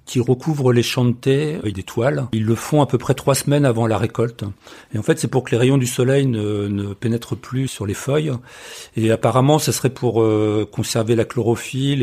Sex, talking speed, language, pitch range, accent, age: male, 230 wpm, French, 110-135 Hz, French, 40-59